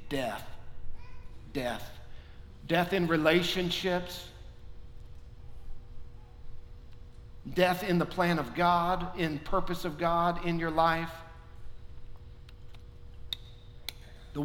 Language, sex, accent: English, male, American